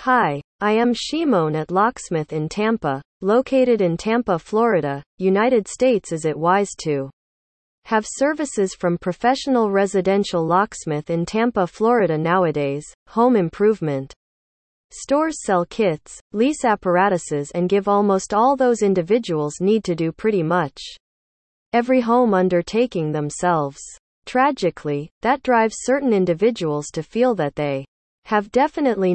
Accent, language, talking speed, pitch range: American, English, 125 wpm, 160-225 Hz